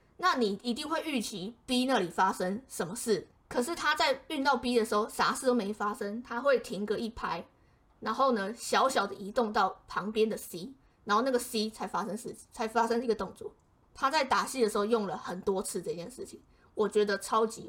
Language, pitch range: Chinese, 205-250 Hz